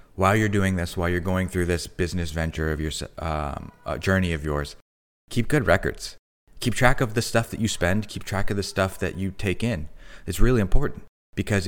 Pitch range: 85-110 Hz